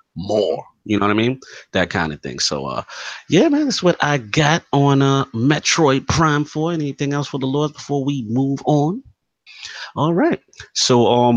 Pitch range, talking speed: 105-135 Hz, 190 wpm